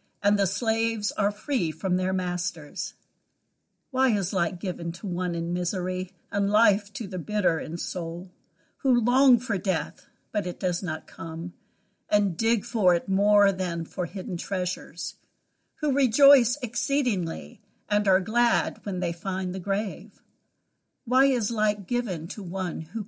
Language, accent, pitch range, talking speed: English, American, 180-225 Hz, 155 wpm